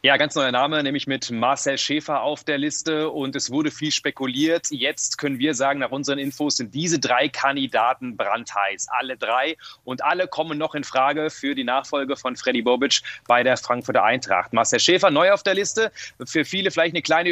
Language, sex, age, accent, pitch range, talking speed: German, male, 30-49, German, 140-175 Hz, 200 wpm